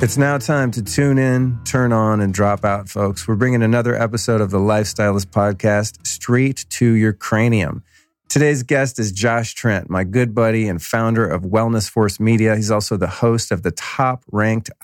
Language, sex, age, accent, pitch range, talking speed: English, male, 40-59, American, 105-130 Hz, 180 wpm